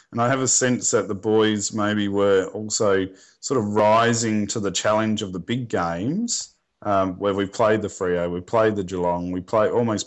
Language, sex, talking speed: English, male, 205 wpm